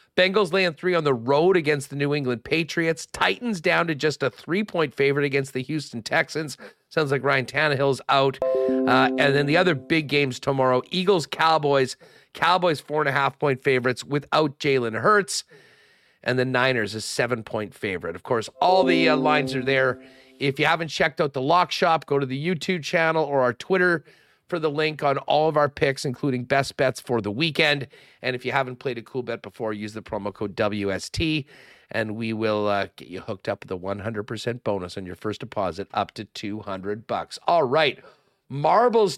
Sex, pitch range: male, 125-160 Hz